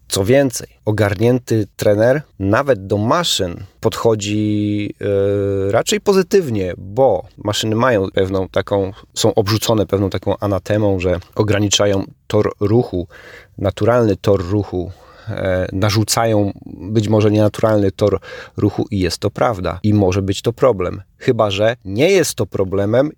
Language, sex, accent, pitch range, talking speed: Polish, male, native, 95-110 Hz, 130 wpm